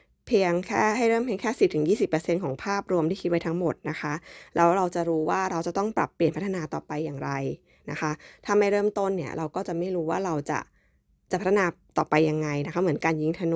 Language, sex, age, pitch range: Thai, female, 20-39, 160-195 Hz